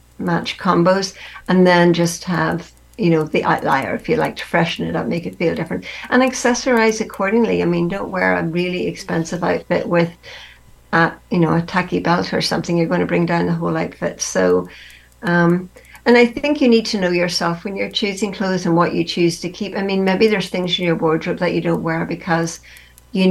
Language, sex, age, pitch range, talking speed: English, female, 60-79, 170-205 Hz, 215 wpm